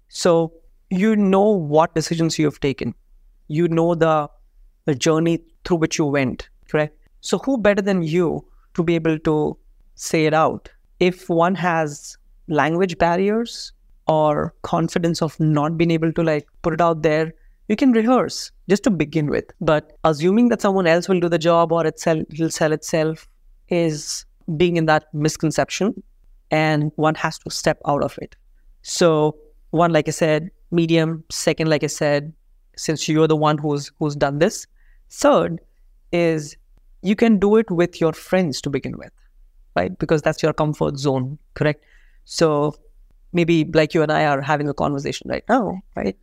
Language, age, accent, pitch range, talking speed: English, 30-49, Indian, 155-175 Hz, 170 wpm